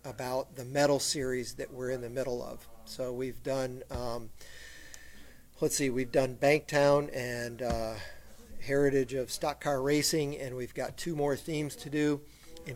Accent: American